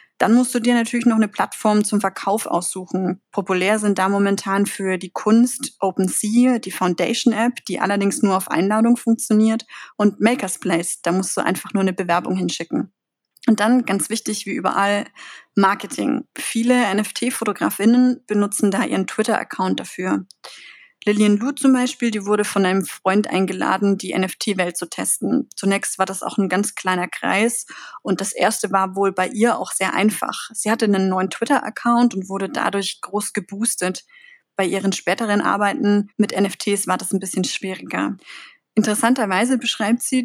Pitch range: 190-230 Hz